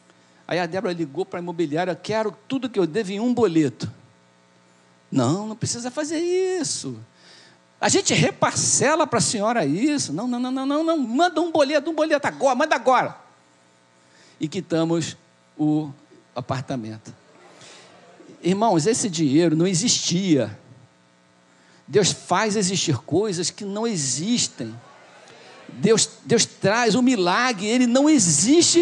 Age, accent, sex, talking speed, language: 50-69, Brazilian, male, 135 wpm, Portuguese